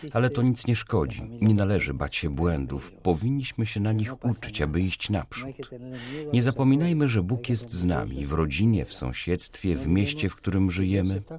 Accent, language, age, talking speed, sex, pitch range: native, Polish, 50-69, 180 wpm, male, 90-120 Hz